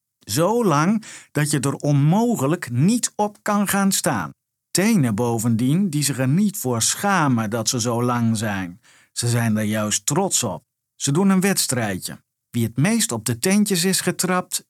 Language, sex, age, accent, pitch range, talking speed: Dutch, male, 50-69, Dutch, 115-165 Hz, 170 wpm